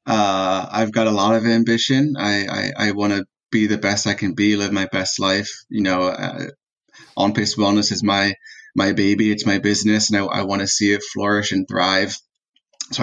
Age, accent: 20-39, American